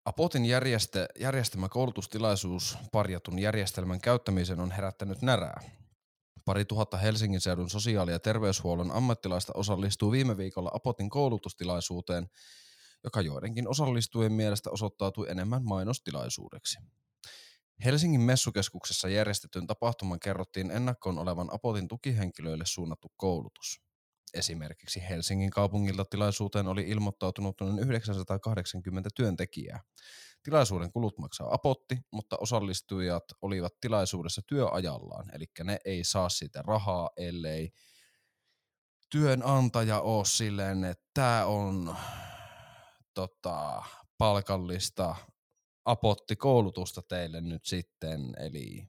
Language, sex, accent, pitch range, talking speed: Finnish, male, native, 90-115 Hz, 95 wpm